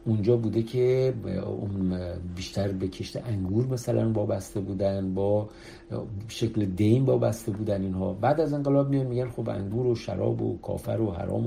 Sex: male